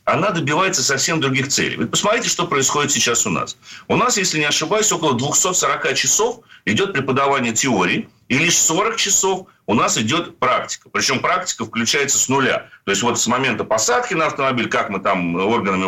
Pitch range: 115-165 Hz